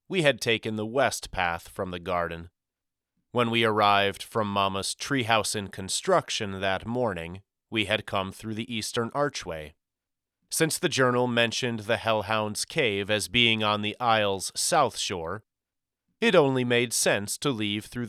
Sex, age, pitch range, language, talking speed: male, 30-49, 95-120 Hz, English, 155 wpm